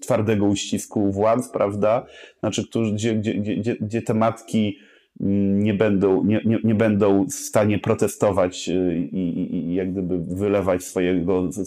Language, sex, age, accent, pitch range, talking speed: Polish, male, 30-49, native, 95-110 Hz, 120 wpm